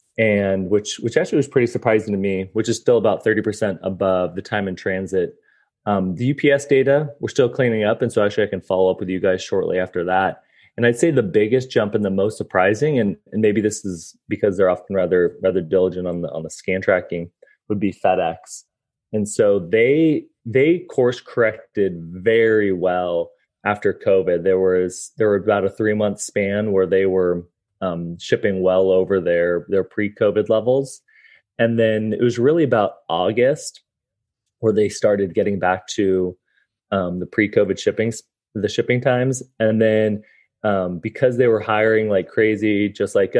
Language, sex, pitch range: English, male, 95-115 Hz